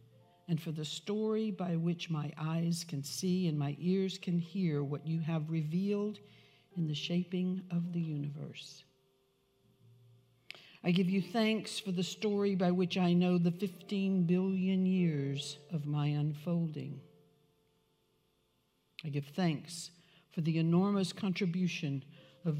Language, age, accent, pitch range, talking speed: English, 60-79, American, 150-180 Hz, 135 wpm